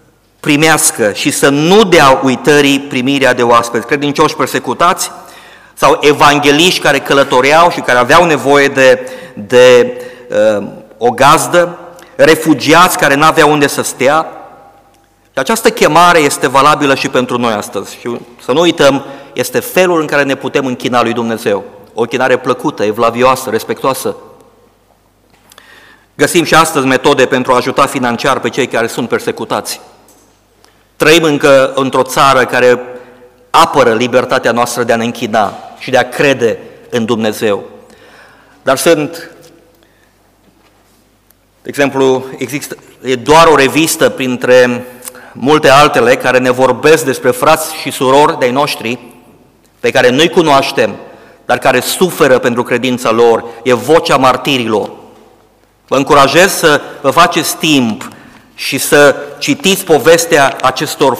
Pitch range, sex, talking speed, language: 125-155 Hz, male, 130 wpm, Romanian